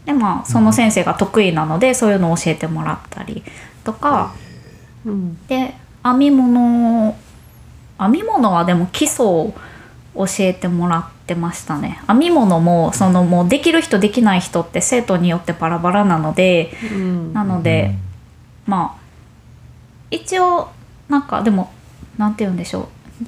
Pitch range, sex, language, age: 170-220 Hz, female, Japanese, 20-39